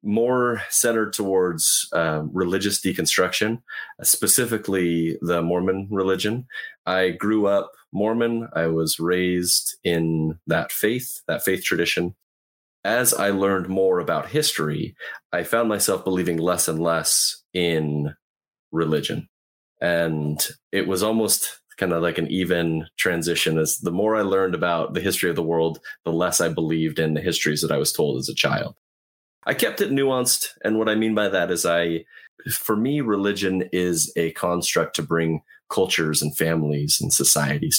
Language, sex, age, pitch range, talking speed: English, male, 20-39, 80-100 Hz, 155 wpm